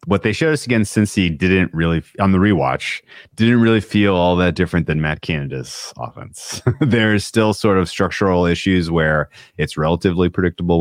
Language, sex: English, male